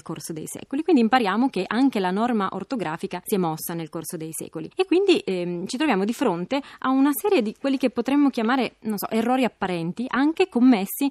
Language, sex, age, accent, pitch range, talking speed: Italian, female, 20-39, native, 180-250 Hz, 205 wpm